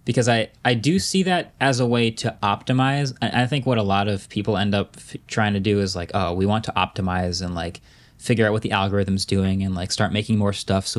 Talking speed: 250 wpm